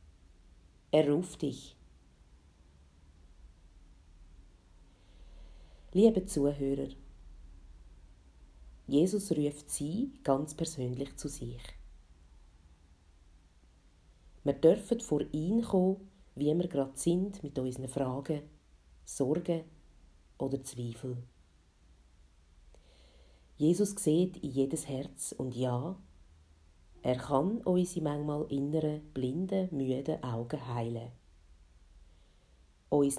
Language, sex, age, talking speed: German, female, 50-69, 80 wpm